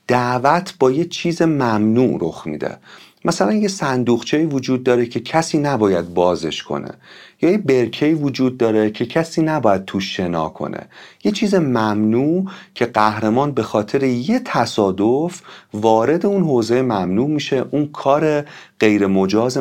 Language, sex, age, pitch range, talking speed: Persian, male, 40-59, 105-150 Hz, 140 wpm